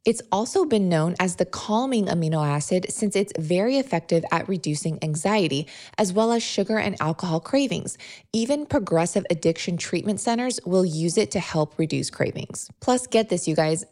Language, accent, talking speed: English, American, 170 wpm